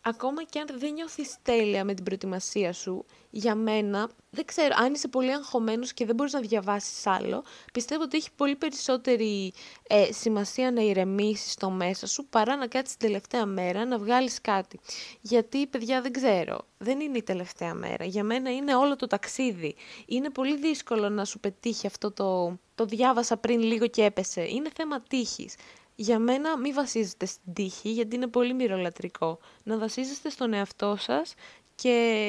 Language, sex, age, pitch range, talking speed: Greek, female, 20-39, 205-255 Hz, 175 wpm